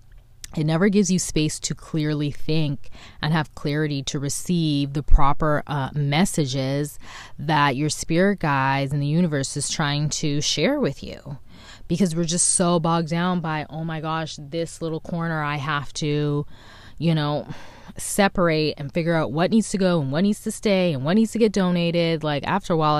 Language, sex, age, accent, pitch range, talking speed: English, female, 20-39, American, 135-165 Hz, 185 wpm